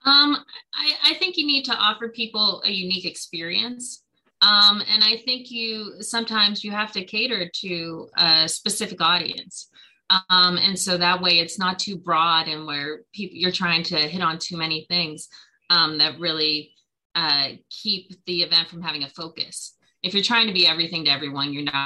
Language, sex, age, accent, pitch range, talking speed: English, female, 20-39, American, 165-205 Hz, 185 wpm